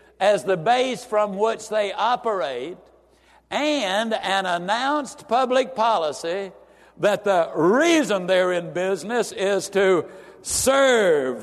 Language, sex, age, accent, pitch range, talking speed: English, male, 60-79, American, 175-230 Hz, 110 wpm